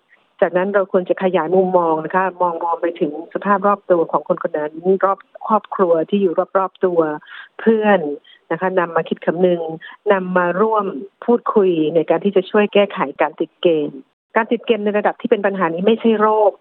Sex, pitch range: female, 170-205 Hz